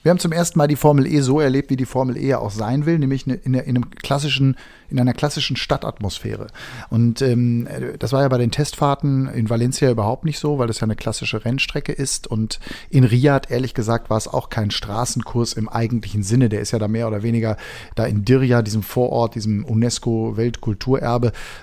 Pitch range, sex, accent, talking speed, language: 115-140 Hz, male, German, 200 wpm, German